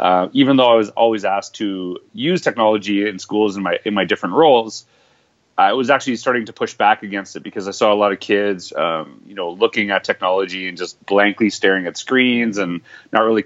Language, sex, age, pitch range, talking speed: English, male, 30-49, 100-115 Hz, 220 wpm